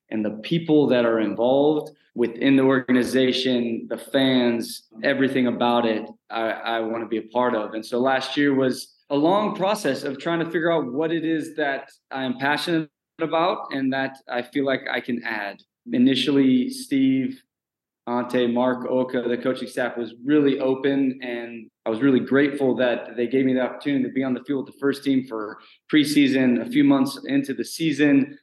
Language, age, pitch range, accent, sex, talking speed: English, 20-39, 120-150 Hz, American, male, 190 wpm